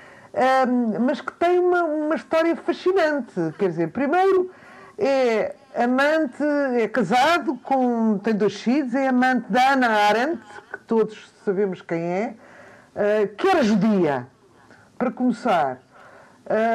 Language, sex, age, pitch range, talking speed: Portuguese, female, 50-69, 200-260 Hz, 130 wpm